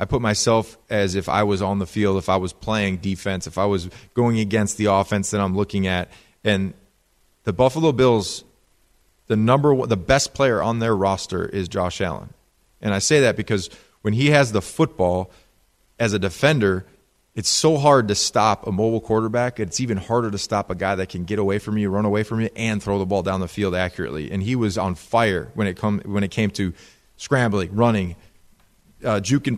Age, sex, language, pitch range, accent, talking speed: 30-49, male, English, 100-115 Hz, American, 210 wpm